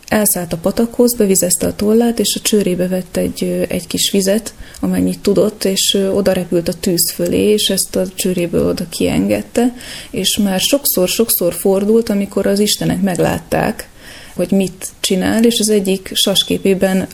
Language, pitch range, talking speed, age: Hungarian, 185-225 Hz, 150 wpm, 30-49